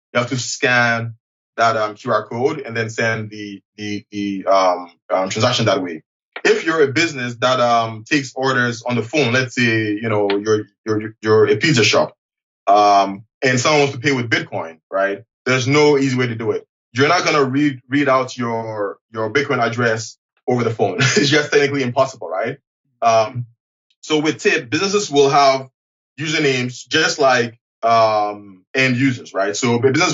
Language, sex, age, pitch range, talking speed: English, male, 20-39, 115-140 Hz, 180 wpm